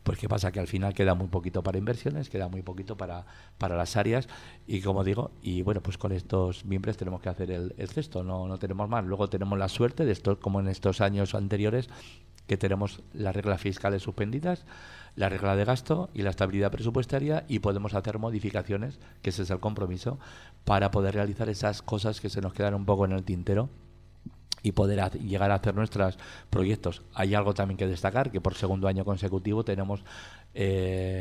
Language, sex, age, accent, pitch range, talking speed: Spanish, male, 50-69, Spanish, 95-105 Hz, 200 wpm